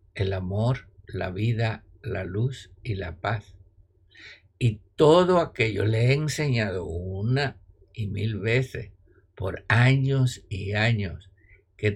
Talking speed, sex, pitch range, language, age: 120 wpm, male, 95-115 Hz, Spanish, 60-79